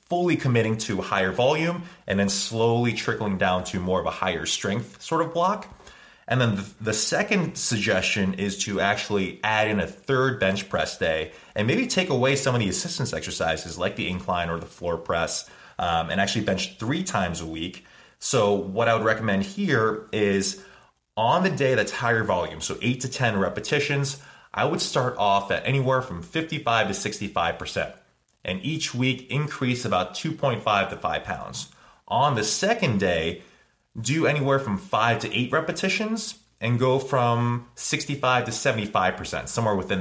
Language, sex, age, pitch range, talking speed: English, male, 30-49, 100-135 Hz, 170 wpm